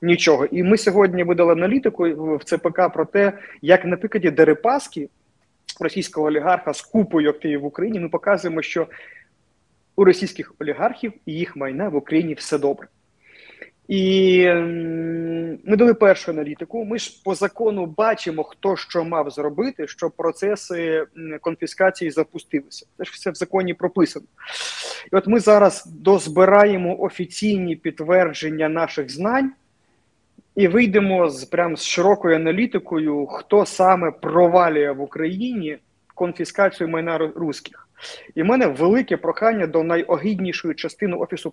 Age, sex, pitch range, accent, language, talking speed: 30-49, male, 160-200 Hz, native, Ukrainian, 130 wpm